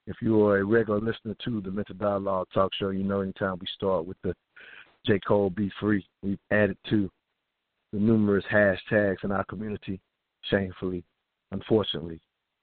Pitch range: 95-105 Hz